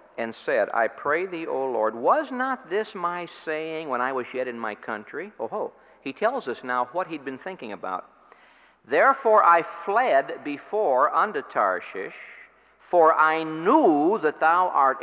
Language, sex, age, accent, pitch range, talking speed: English, male, 60-79, American, 115-180 Hz, 170 wpm